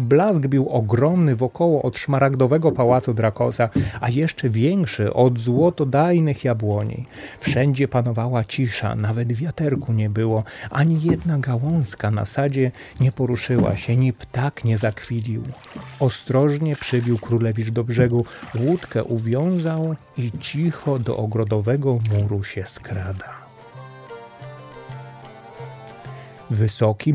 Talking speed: 105 wpm